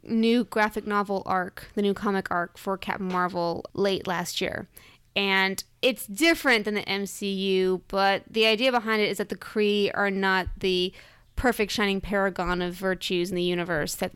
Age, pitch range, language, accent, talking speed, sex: 20-39, 185-210 Hz, English, American, 175 wpm, female